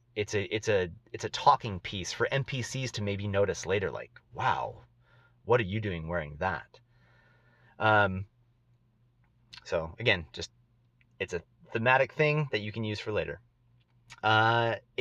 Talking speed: 150 wpm